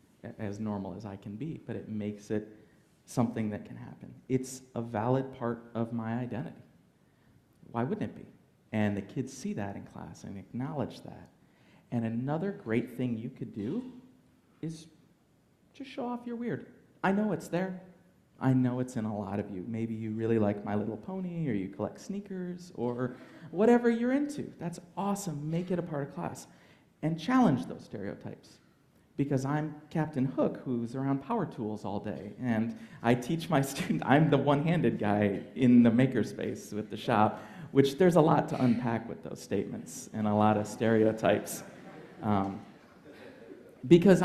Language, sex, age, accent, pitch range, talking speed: English, male, 40-59, American, 110-155 Hz, 175 wpm